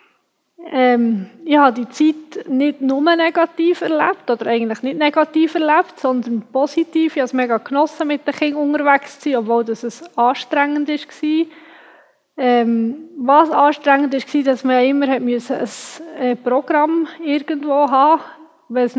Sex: female